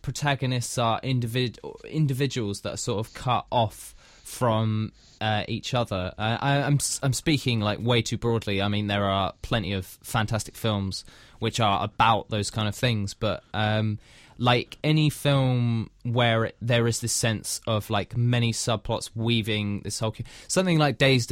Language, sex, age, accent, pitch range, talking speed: English, male, 20-39, British, 105-125 Hz, 160 wpm